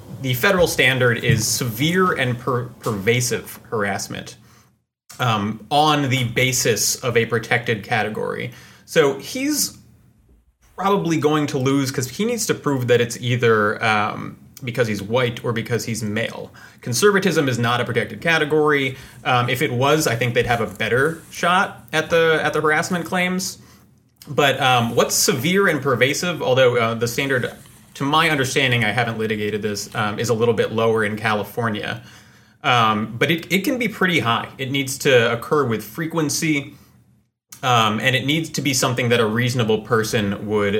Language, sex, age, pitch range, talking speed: English, male, 30-49, 115-150 Hz, 165 wpm